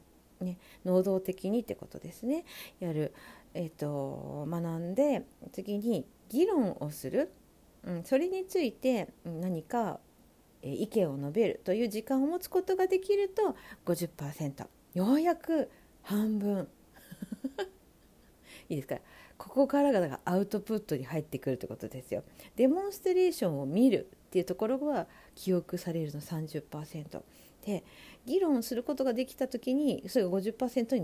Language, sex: Japanese, female